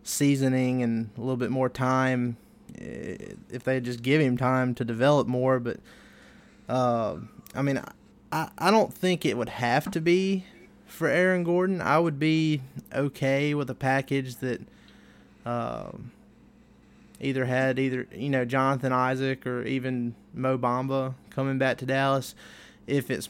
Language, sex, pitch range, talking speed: English, male, 120-135 Hz, 150 wpm